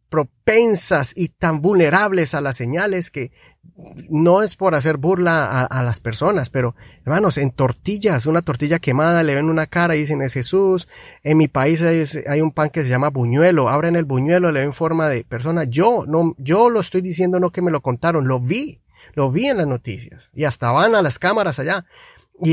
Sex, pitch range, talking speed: male, 140-180 Hz, 200 wpm